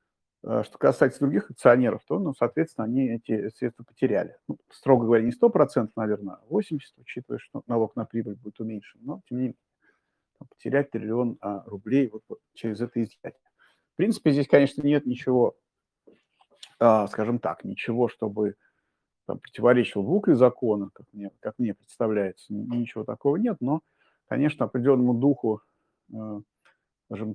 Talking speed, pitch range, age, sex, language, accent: 140 wpm, 105-130 Hz, 50-69, male, Russian, native